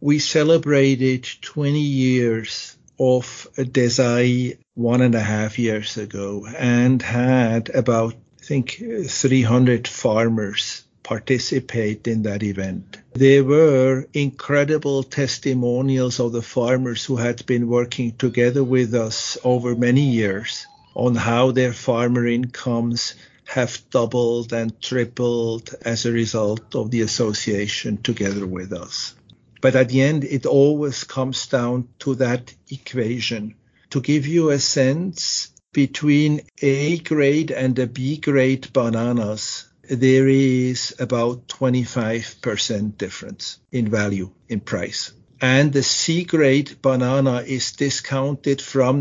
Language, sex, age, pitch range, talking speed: English, male, 50-69, 120-135 Hz, 115 wpm